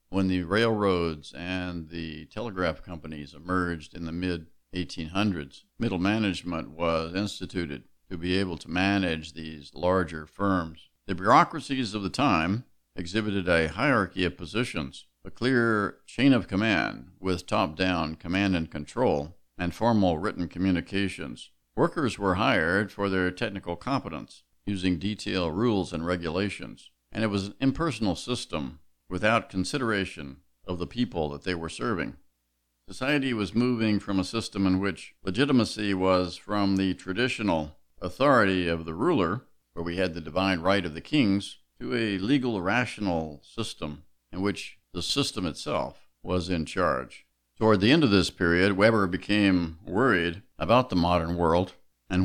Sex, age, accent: male, 50-69, American